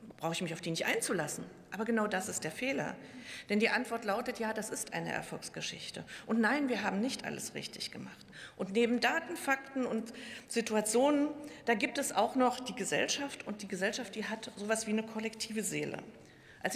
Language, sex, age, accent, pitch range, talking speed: German, female, 50-69, German, 180-235 Hz, 195 wpm